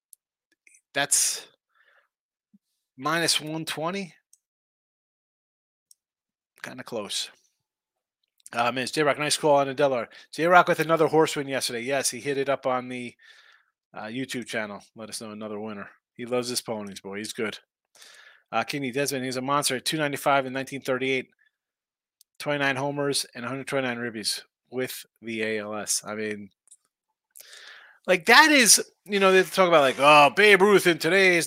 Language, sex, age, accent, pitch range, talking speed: English, male, 30-49, American, 125-175 Hz, 140 wpm